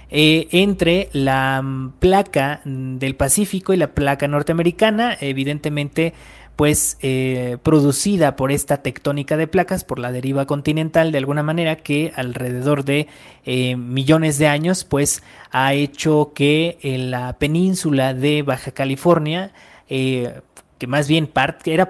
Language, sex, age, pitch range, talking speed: Spanish, male, 20-39, 130-160 Hz, 135 wpm